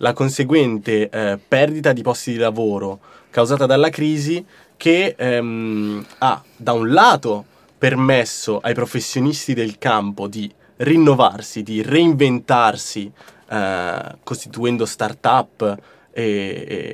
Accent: native